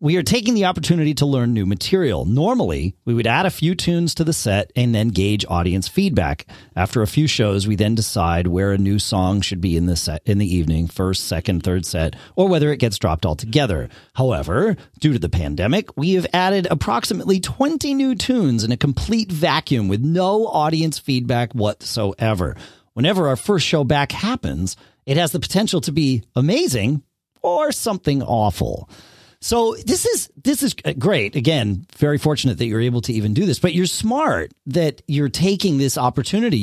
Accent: American